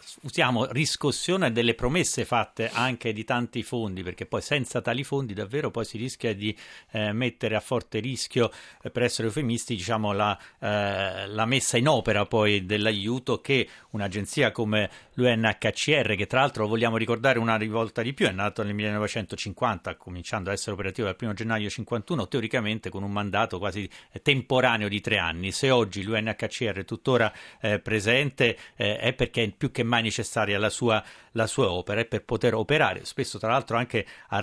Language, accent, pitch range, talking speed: Italian, native, 105-125 Hz, 175 wpm